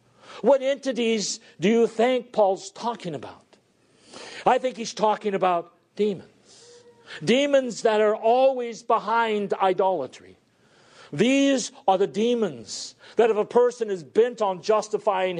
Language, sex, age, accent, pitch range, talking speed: English, male, 50-69, American, 175-230 Hz, 125 wpm